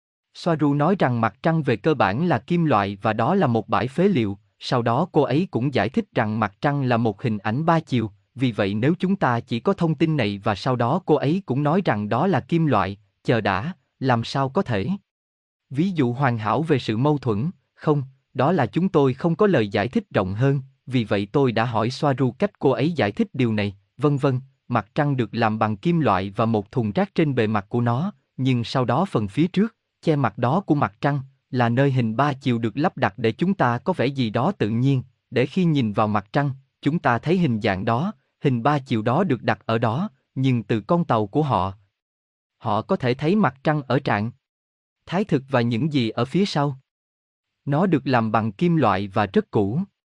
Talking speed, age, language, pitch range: 230 wpm, 20-39, Vietnamese, 115-155 Hz